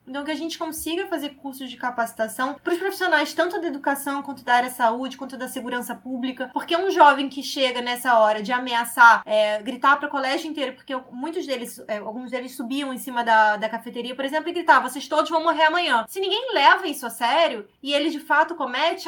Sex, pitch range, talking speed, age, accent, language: female, 250-320 Hz, 215 wpm, 20-39, Brazilian, Portuguese